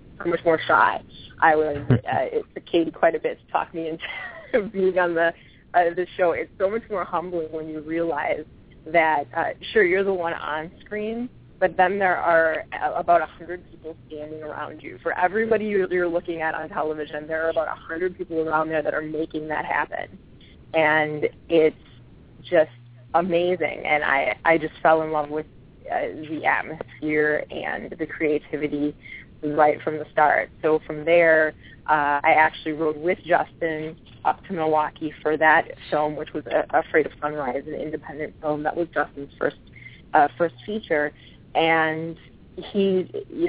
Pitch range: 150-175 Hz